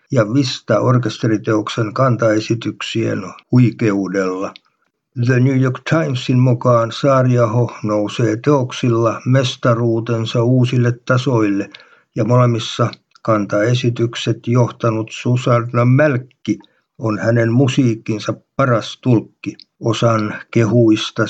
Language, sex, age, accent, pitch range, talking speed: Finnish, male, 60-79, native, 105-125 Hz, 80 wpm